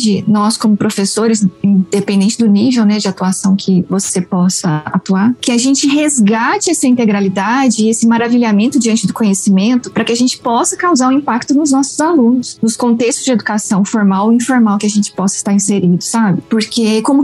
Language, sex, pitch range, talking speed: Portuguese, female, 200-255 Hz, 180 wpm